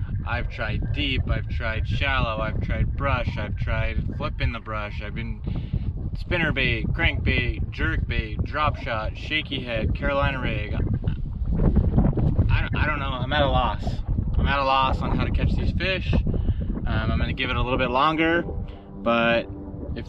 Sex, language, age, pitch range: male, English, 20-39, 95-140 Hz